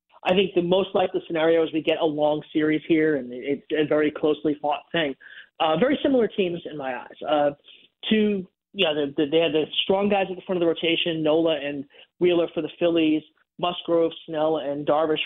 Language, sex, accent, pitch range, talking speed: English, male, American, 155-195 Hz, 215 wpm